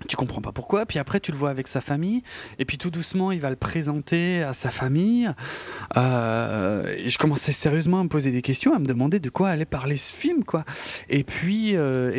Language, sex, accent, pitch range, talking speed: French, male, French, 125-155 Hz, 225 wpm